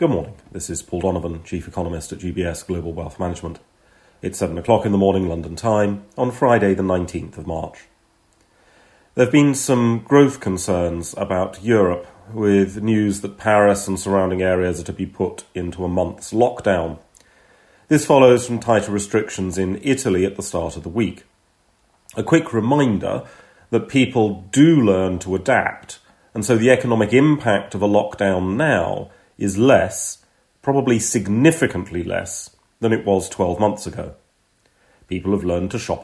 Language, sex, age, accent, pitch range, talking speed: English, male, 40-59, British, 90-115 Hz, 160 wpm